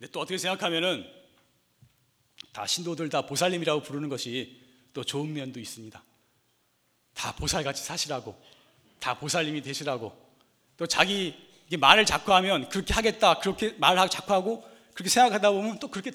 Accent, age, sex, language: native, 40-59, male, Korean